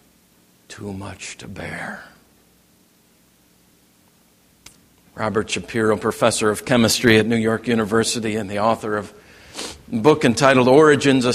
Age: 50-69